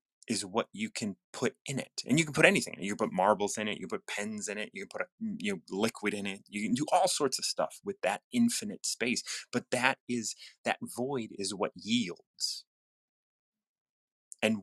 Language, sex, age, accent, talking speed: English, male, 30-49, American, 220 wpm